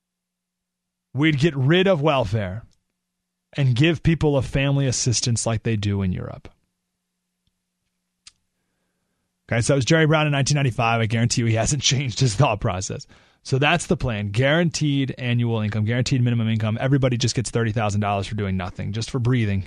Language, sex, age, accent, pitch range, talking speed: English, male, 30-49, American, 105-145 Hz, 160 wpm